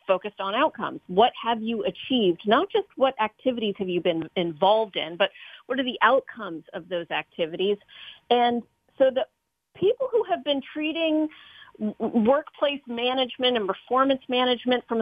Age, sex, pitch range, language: 40-59, female, 195-260 Hz, English